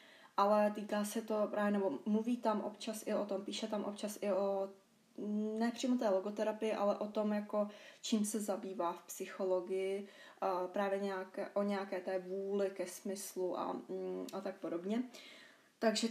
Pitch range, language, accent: 195-225 Hz, Czech, native